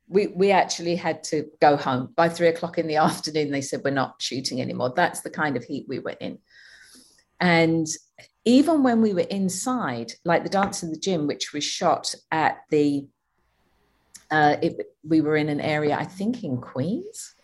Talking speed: 190 wpm